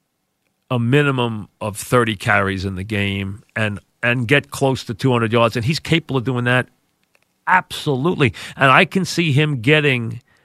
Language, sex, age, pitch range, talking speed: English, male, 40-59, 115-145 Hz, 160 wpm